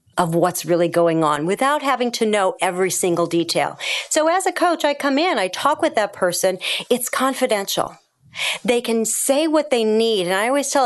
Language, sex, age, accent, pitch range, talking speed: English, female, 40-59, American, 190-280 Hz, 200 wpm